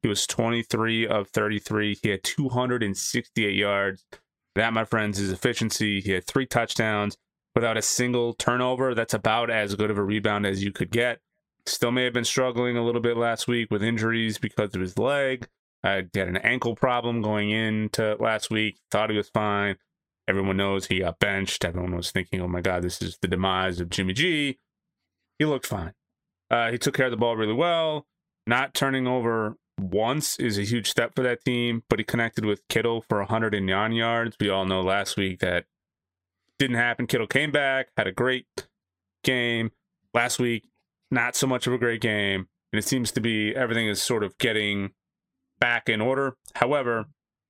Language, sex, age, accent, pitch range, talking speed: English, male, 20-39, American, 100-125 Hz, 190 wpm